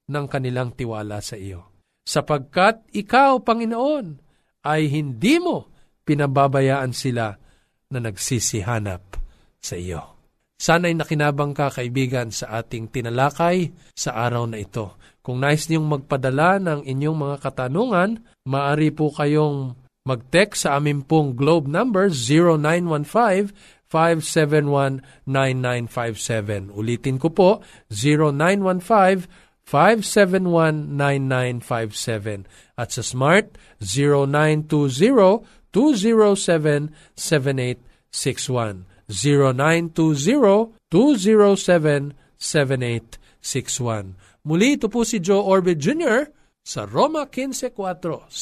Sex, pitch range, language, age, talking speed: male, 125-185 Hz, Filipino, 50-69, 80 wpm